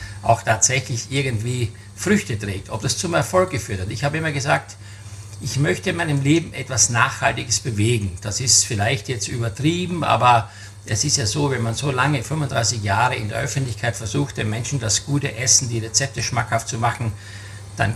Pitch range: 110-140 Hz